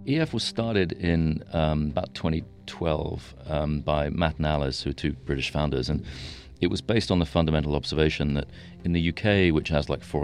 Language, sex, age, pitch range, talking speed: English, male, 40-59, 70-85 Hz, 195 wpm